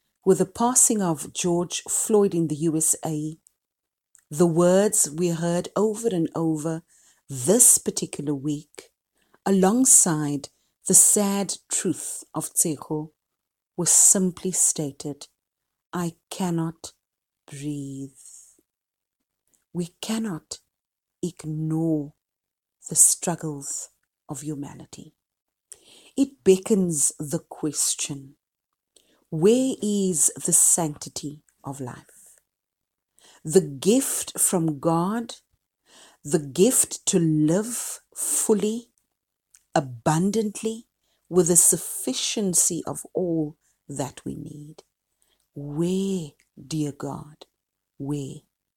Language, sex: English, female